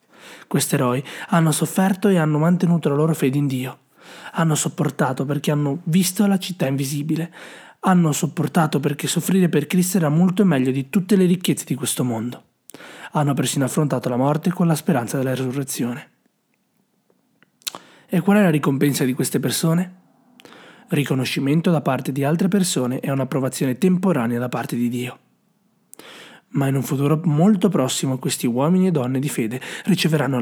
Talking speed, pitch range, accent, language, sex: 160 wpm, 135-180 Hz, native, Italian, male